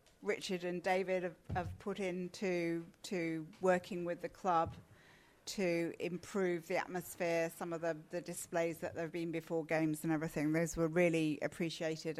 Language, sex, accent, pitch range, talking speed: English, female, British, 165-200 Hz, 165 wpm